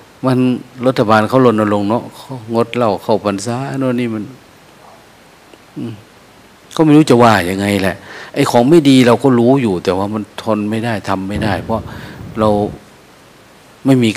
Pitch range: 100-120 Hz